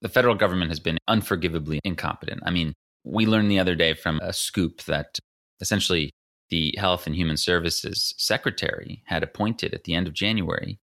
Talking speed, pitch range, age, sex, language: 175 wpm, 80-100 Hz, 30-49, male, English